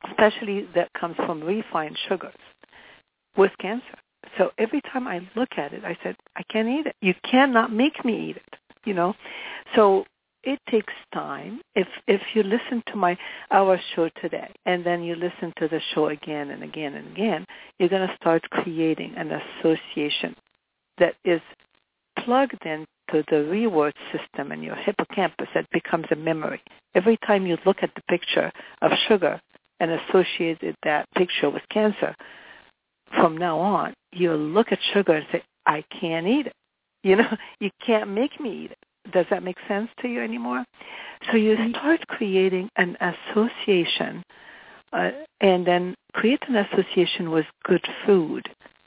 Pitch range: 175-225 Hz